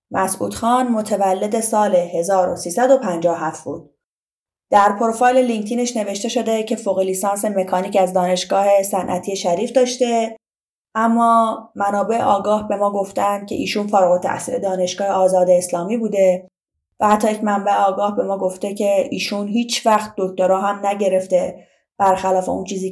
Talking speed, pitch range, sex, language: 135 wpm, 185-230 Hz, female, Persian